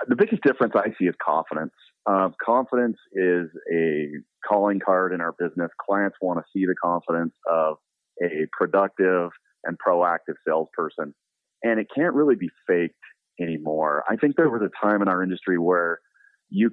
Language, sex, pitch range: English, male, 85-105 Hz